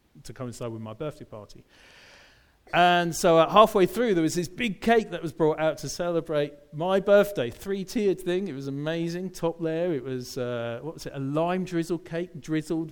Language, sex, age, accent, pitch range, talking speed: English, male, 40-59, British, 140-205 Hz, 195 wpm